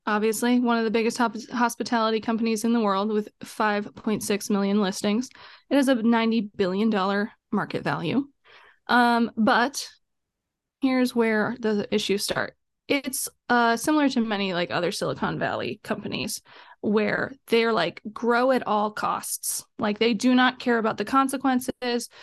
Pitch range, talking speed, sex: 215-250 Hz, 150 wpm, female